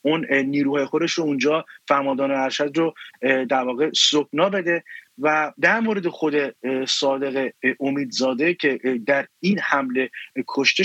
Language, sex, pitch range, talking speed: English, male, 140-170 Hz, 115 wpm